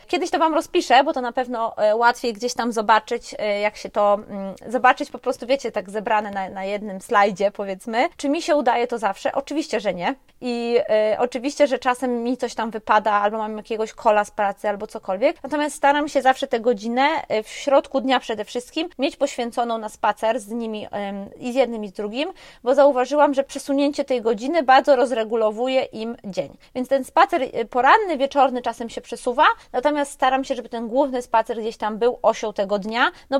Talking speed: 190 wpm